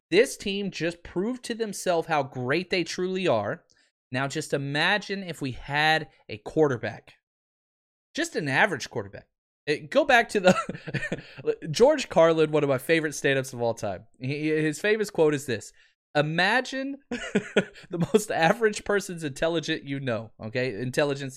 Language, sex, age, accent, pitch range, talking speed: English, male, 30-49, American, 140-205 Hz, 145 wpm